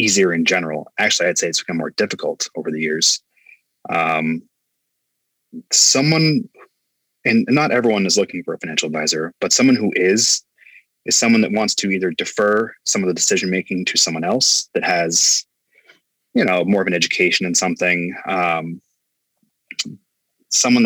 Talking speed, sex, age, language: 155 wpm, male, 20-39, English